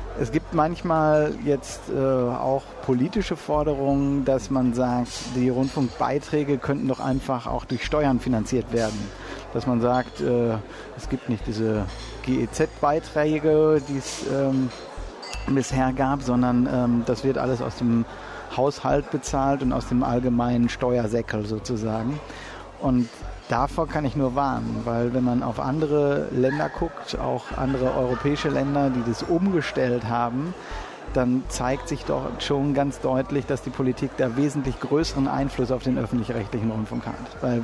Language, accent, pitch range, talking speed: German, German, 125-140 Hz, 140 wpm